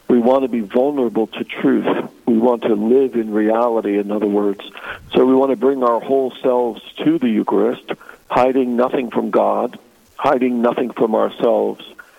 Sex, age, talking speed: male, 60-79, 170 wpm